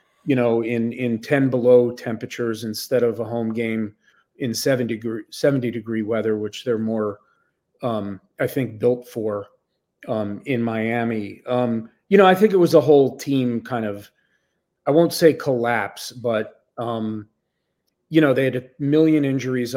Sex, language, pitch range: male, English, 110-135 Hz